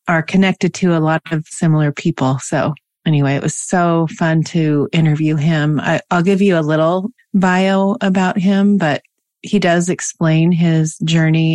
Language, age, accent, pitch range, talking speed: English, 30-49, American, 155-185 Hz, 160 wpm